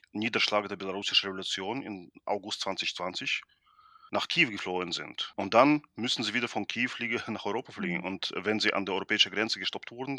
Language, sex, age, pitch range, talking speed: German, male, 30-49, 95-110 Hz, 185 wpm